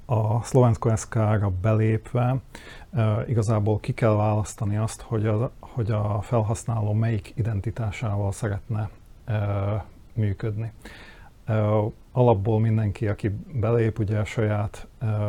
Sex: male